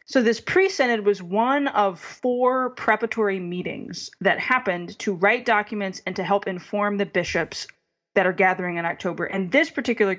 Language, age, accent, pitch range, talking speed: English, 20-39, American, 185-225 Hz, 170 wpm